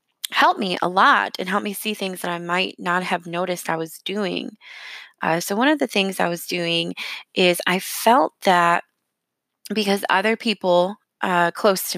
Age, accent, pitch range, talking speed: 20-39, American, 175-205 Hz, 185 wpm